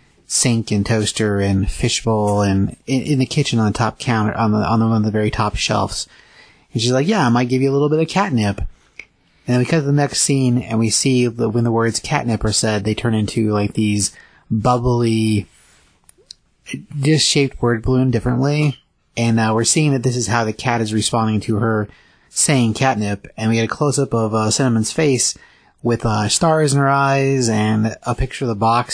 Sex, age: male, 30-49